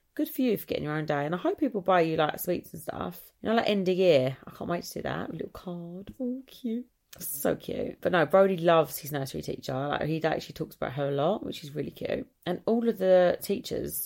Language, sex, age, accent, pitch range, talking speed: English, female, 30-49, British, 155-200 Hz, 255 wpm